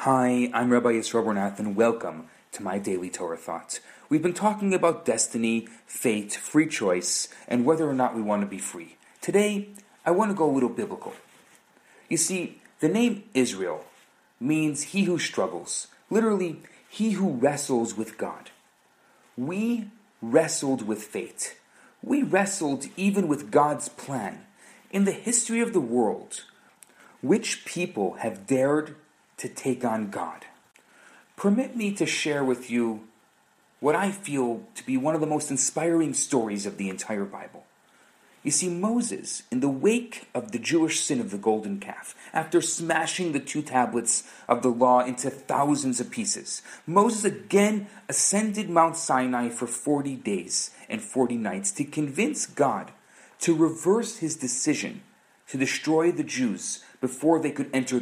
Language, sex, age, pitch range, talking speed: English, male, 30-49, 125-195 Hz, 155 wpm